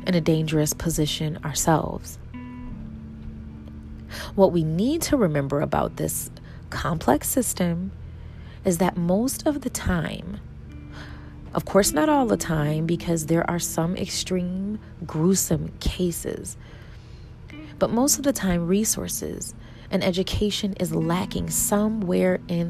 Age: 30-49